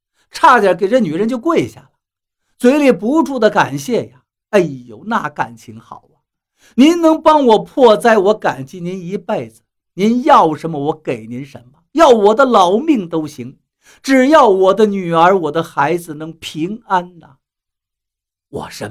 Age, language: 50-69, Chinese